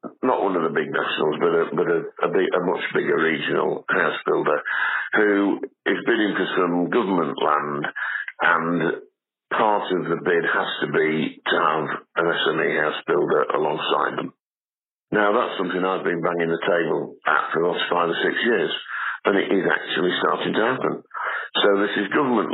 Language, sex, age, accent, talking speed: English, male, 50-69, British, 180 wpm